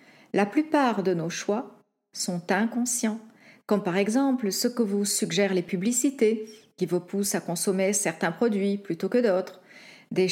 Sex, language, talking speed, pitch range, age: female, French, 155 wpm, 185-245 Hz, 50-69